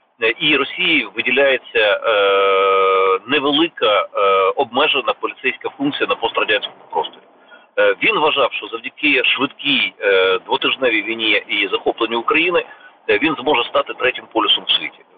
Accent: native